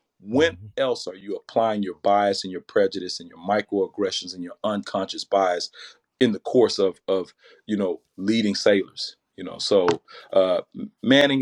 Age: 40-59